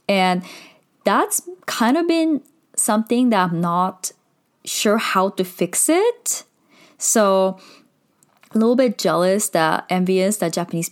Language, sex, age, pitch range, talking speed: English, female, 10-29, 170-235 Hz, 125 wpm